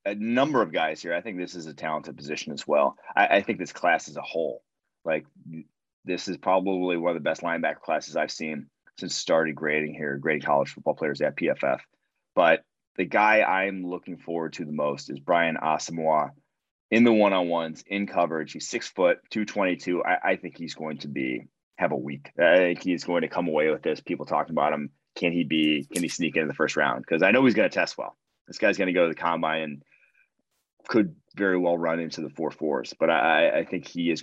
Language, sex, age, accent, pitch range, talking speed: English, male, 30-49, American, 80-95 Hz, 225 wpm